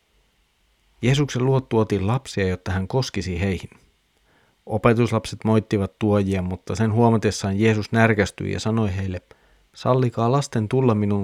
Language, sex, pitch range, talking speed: Finnish, male, 100-125 Hz, 125 wpm